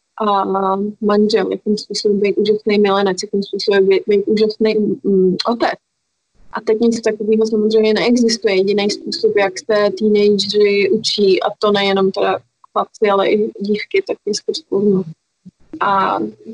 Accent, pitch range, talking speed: native, 195-215 Hz, 135 wpm